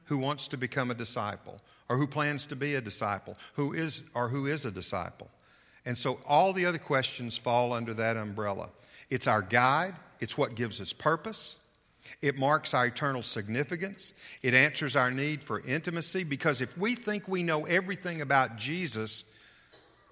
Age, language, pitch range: 50-69, English, 100-145 Hz